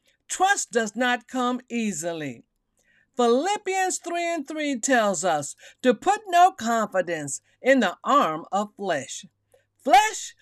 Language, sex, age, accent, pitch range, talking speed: English, female, 50-69, American, 210-350 Hz, 120 wpm